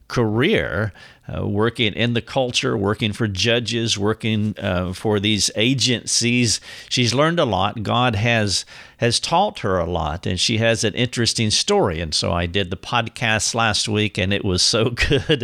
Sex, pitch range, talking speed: male, 100-125 Hz, 170 wpm